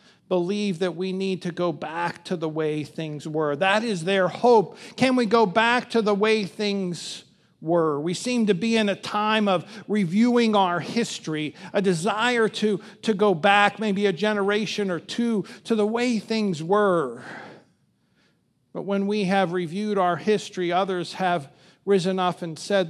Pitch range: 175-220 Hz